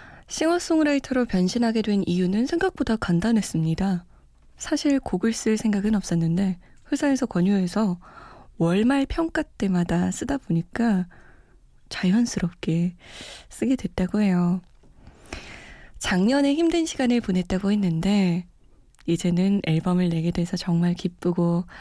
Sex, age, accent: female, 20-39, native